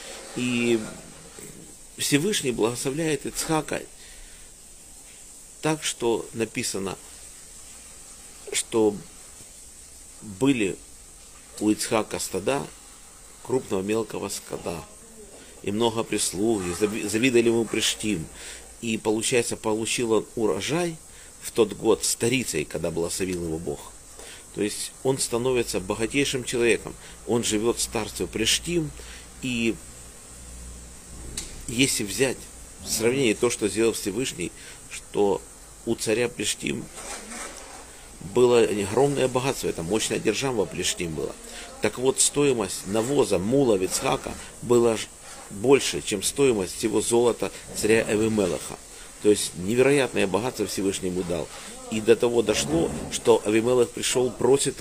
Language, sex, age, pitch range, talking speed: Russian, male, 50-69, 95-120 Hz, 105 wpm